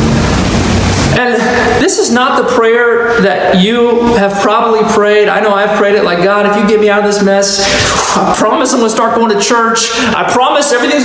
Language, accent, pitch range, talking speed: English, American, 180-220 Hz, 205 wpm